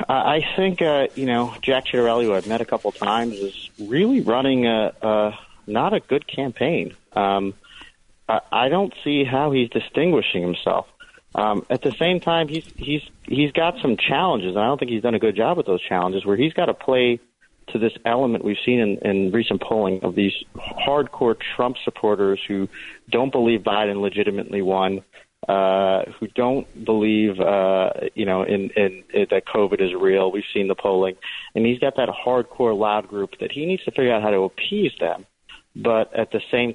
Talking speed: 195 wpm